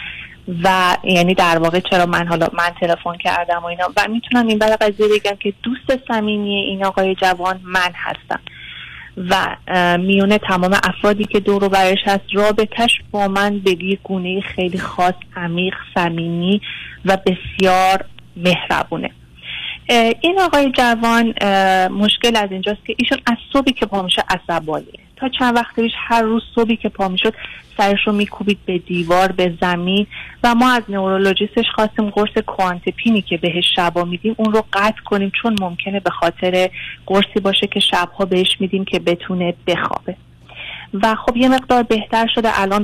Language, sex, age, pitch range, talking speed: Persian, female, 30-49, 185-220 Hz, 155 wpm